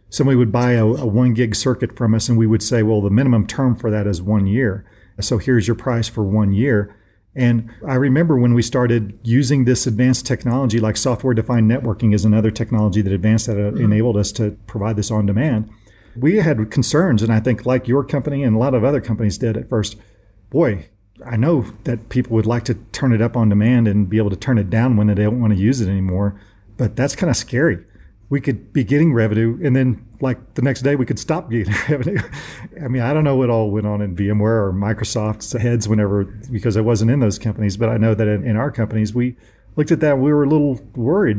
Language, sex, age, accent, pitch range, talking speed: English, male, 40-59, American, 105-125 Hz, 235 wpm